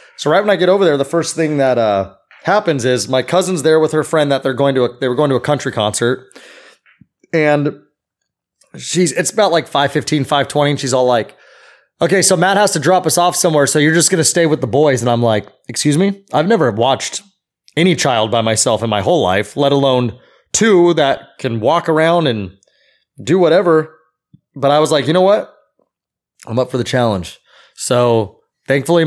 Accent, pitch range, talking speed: American, 130-165 Hz, 205 wpm